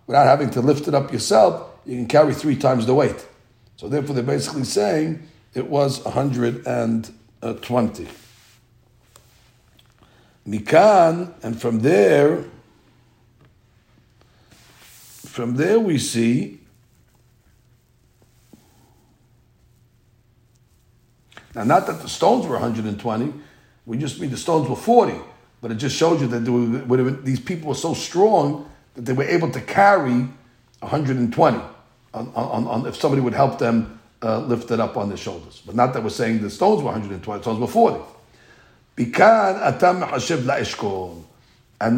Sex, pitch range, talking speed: male, 115-150 Hz, 130 wpm